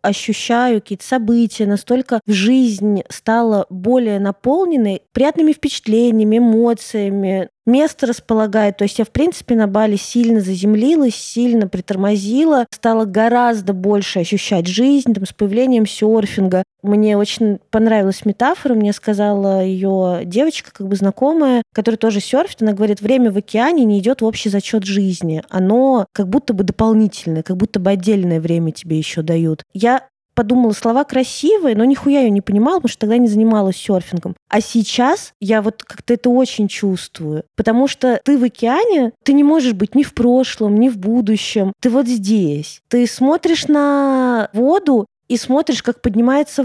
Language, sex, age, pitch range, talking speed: Russian, female, 20-39, 205-255 Hz, 155 wpm